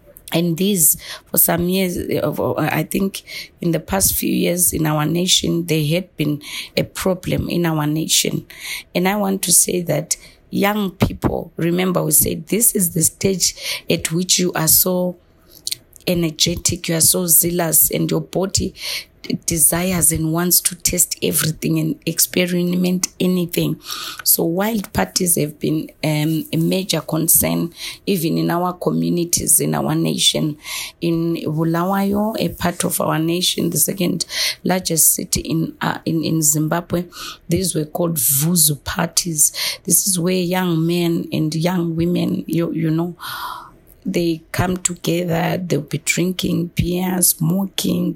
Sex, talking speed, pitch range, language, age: female, 145 wpm, 160-180 Hz, English, 30-49